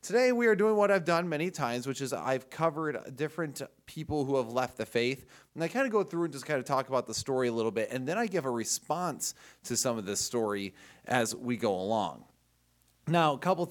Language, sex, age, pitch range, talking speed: English, male, 30-49, 110-155 Hz, 240 wpm